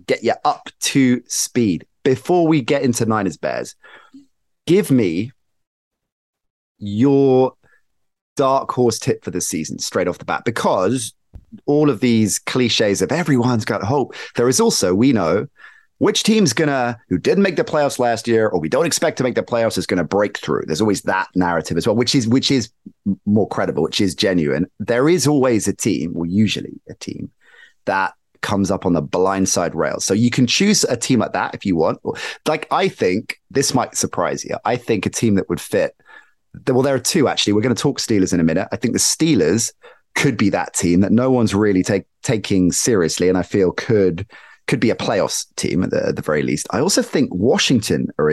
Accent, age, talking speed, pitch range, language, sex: British, 30-49, 205 wpm, 100-140 Hz, English, male